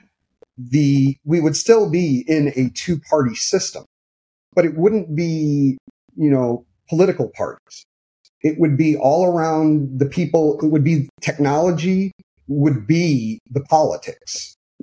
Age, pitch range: 30-49, 135-170 Hz